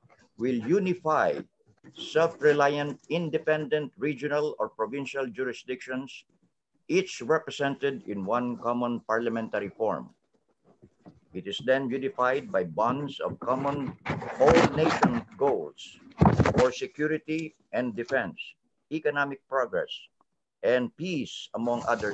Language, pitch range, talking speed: English, 125-155 Hz, 95 wpm